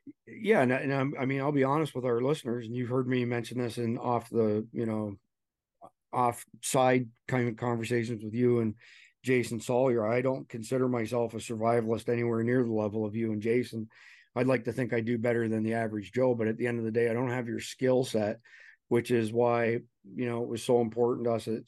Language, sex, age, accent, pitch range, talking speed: English, male, 40-59, American, 115-130 Hz, 225 wpm